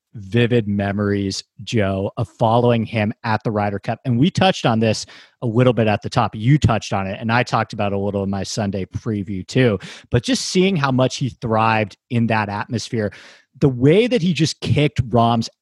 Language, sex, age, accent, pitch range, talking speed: English, male, 30-49, American, 110-140 Hz, 205 wpm